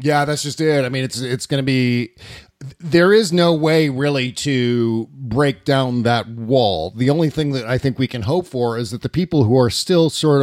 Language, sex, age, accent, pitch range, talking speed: English, male, 40-59, American, 115-145 Hz, 225 wpm